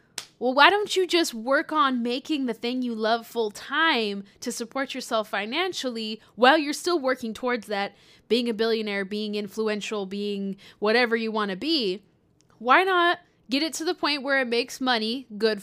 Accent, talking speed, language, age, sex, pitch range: American, 180 wpm, English, 20-39, female, 210-280 Hz